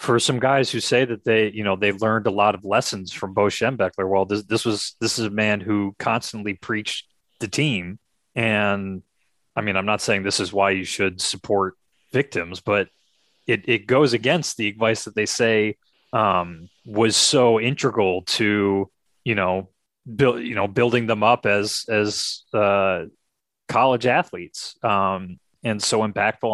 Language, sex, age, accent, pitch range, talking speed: English, male, 30-49, American, 100-120 Hz, 170 wpm